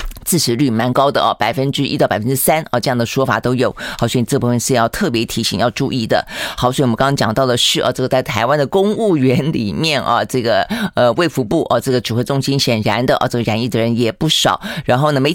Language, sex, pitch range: Chinese, female, 120-150 Hz